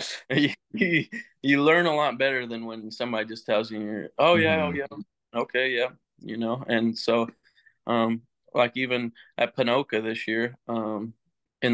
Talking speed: 160 wpm